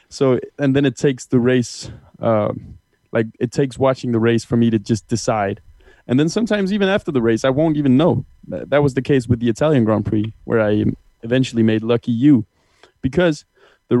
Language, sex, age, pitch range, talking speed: German, male, 20-39, 115-145 Hz, 200 wpm